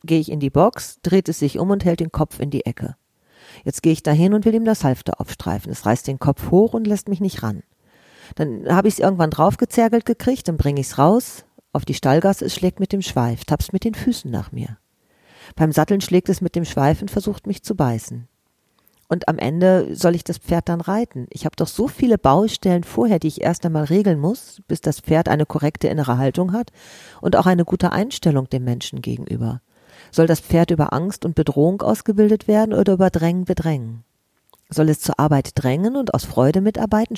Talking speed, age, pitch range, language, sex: 215 wpm, 40-59, 135-200 Hz, German, female